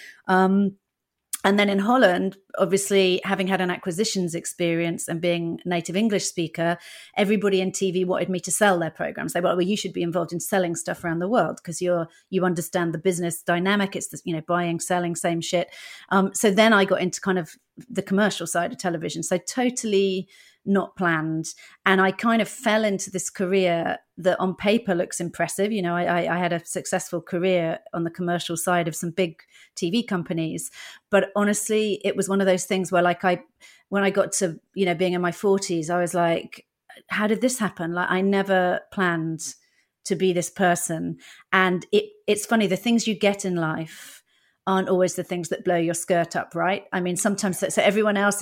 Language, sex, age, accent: English, female, 30-49, British